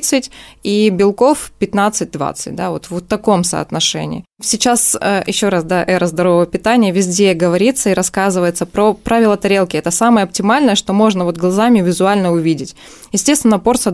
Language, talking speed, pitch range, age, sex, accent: Russian, 140 wpm, 180-220 Hz, 20-39, female, native